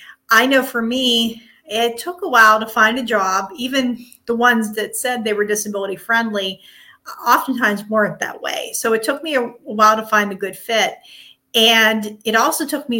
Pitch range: 210-235 Hz